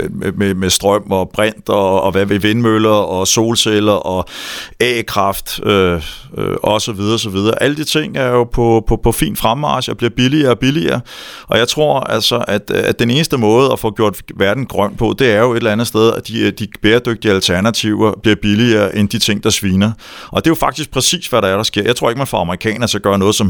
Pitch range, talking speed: 100-120 Hz, 235 wpm